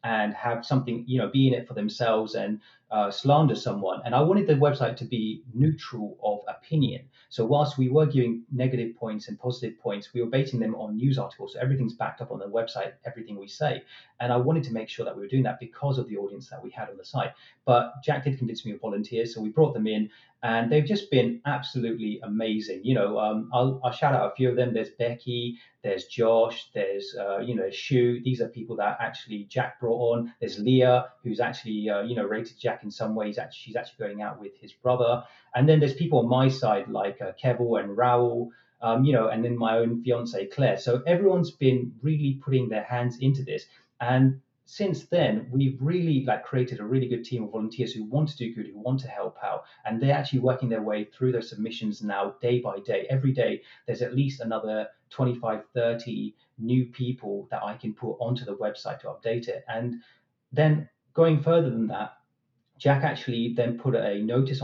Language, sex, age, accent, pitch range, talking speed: English, male, 30-49, British, 110-130 Hz, 220 wpm